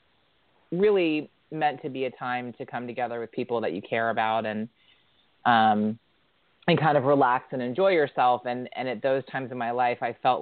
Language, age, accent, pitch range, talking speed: English, 30-49, American, 115-125 Hz, 195 wpm